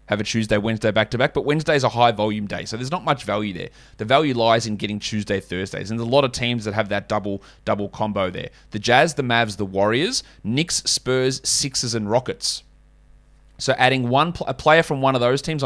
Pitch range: 105-130 Hz